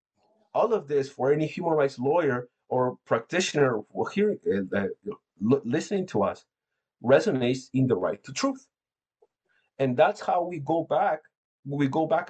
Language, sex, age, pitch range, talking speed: English, male, 50-69, 120-160 Hz, 135 wpm